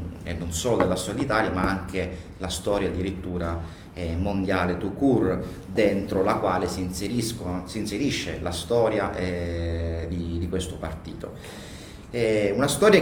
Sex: male